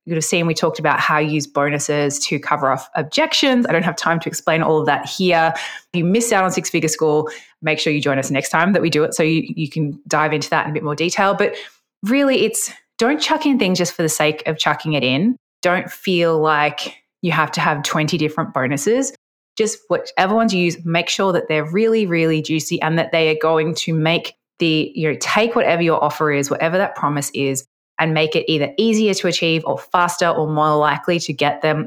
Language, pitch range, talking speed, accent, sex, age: English, 150-185 Hz, 235 wpm, Australian, female, 20-39